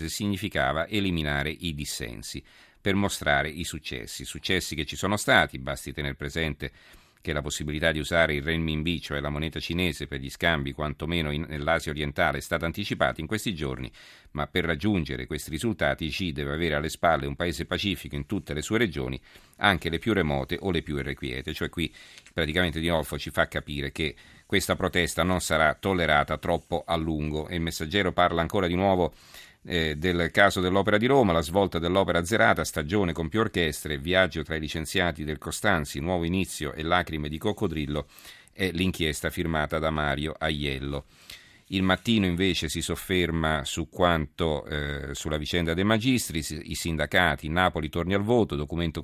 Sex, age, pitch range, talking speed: male, 50-69, 75-90 Hz, 170 wpm